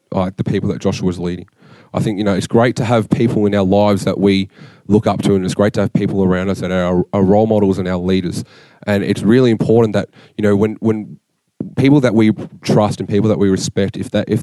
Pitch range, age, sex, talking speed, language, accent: 95-115 Hz, 20-39, male, 255 wpm, English, Australian